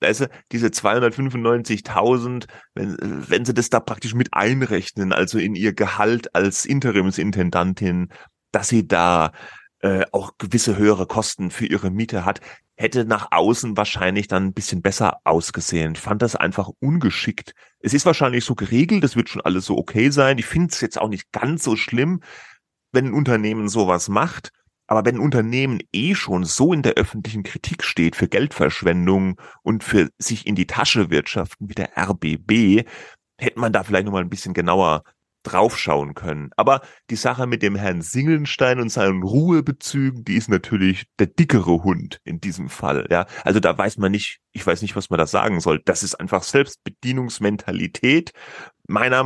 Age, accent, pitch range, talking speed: 30-49, German, 95-125 Hz, 170 wpm